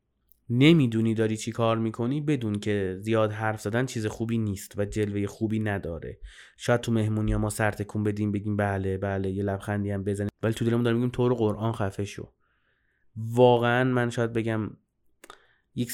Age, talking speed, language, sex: 30-49, 175 wpm, Persian, male